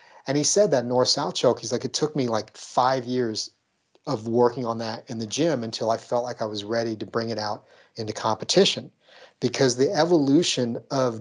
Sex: male